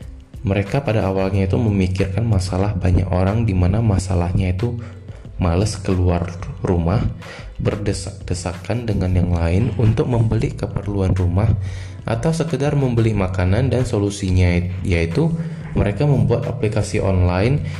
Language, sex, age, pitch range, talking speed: Indonesian, male, 20-39, 90-115 Hz, 110 wpm